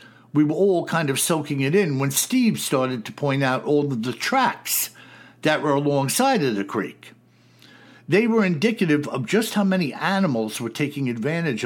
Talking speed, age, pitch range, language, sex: 180 wpm, 60-79, 130-180 Hz, English, male